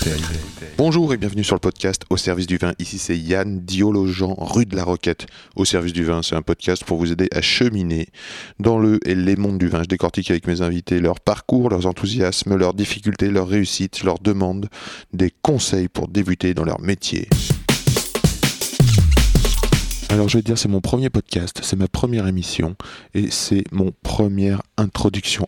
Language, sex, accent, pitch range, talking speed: French, male, French, 90-105 Hz, 180 wpm